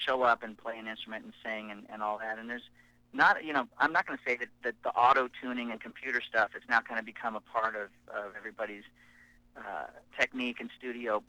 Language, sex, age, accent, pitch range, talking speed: English, male, 40-59, American, 110-125 Hz, 235 wpm